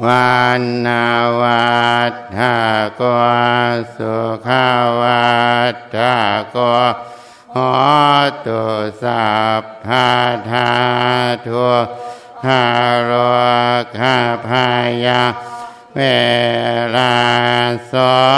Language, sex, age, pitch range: Thai, male, 60-79, 120-125 Hz